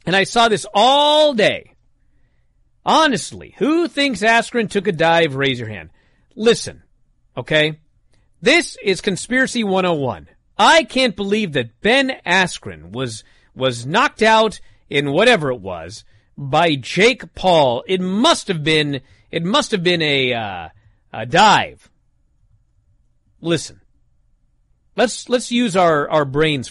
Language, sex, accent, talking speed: English, male, American, 130 wpm